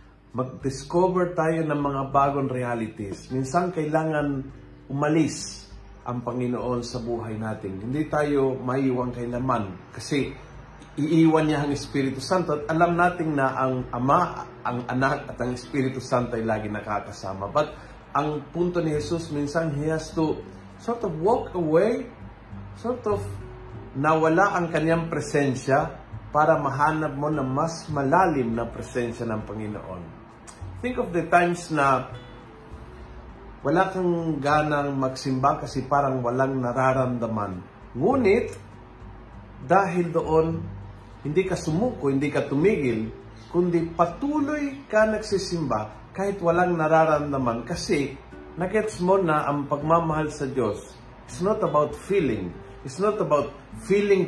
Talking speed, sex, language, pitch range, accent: 125 wpm, male, Filipino, 120-160 Hz, native